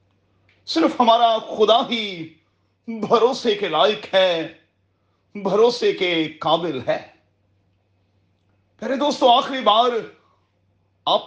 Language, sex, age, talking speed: Urdu, male, 40-59, 90 wpm